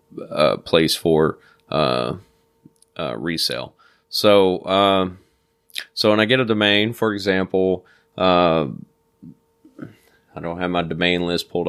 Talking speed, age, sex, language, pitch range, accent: 130 wpm, 30-49, male, English, 85-95 Hz, American